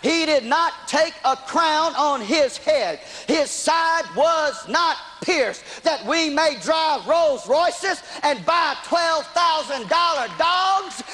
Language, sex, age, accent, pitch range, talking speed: English, male, 40-59, American, 320-390 Hz, 130 wpm